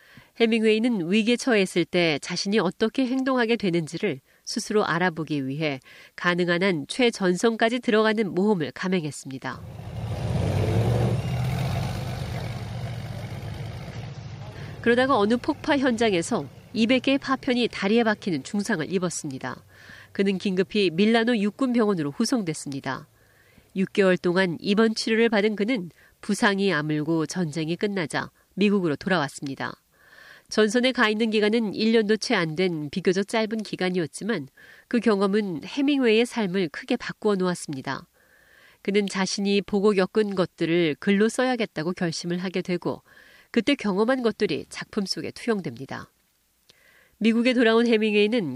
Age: 40-59